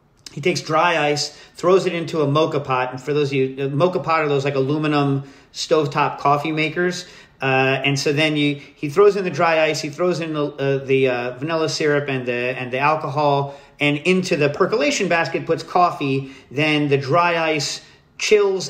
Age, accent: 40-59, American